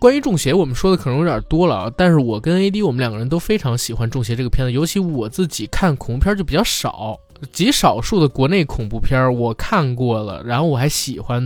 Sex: male